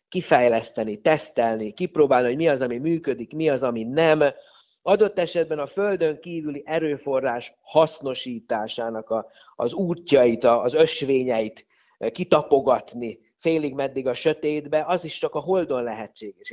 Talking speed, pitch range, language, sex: 125 wpm, 120-155 Hz, Hungarian, male